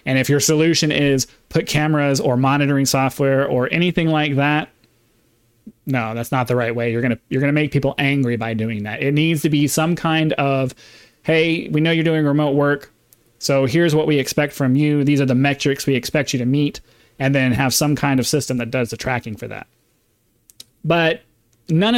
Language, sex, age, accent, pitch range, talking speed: English, male, 30-49, American, 130-155 Hz, 210 wpm